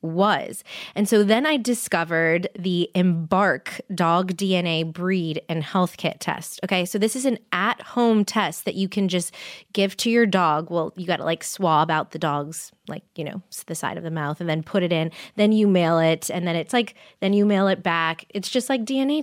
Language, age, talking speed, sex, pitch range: English, 20-39, 220 wpm, female, 175-225 Hz